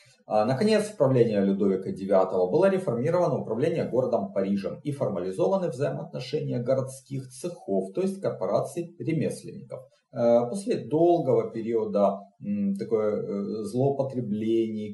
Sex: male